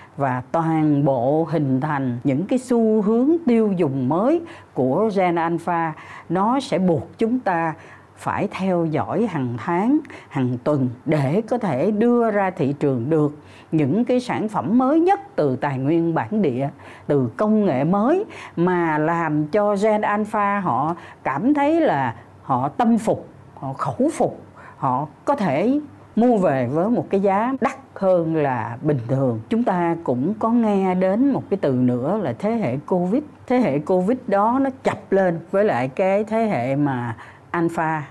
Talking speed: 170 wpm